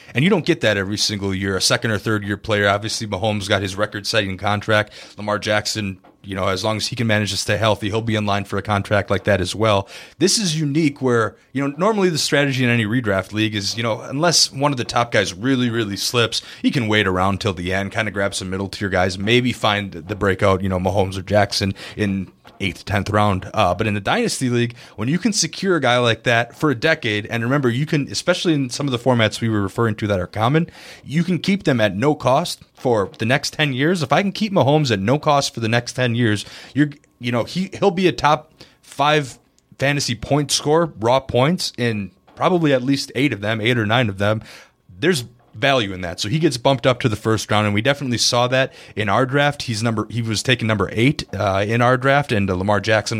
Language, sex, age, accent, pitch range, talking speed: English, male, 30-49, American, 105-135 Hz, 245 wpm